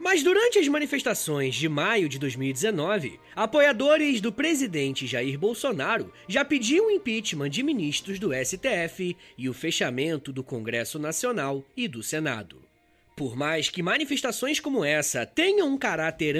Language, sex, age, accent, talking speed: Portuguese, male, 20-39, Brazilian, 140 wpm